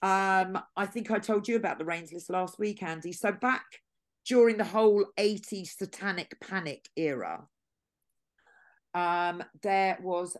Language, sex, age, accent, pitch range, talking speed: English, female, 40-59, British, 155-195 Hz, 145 wpm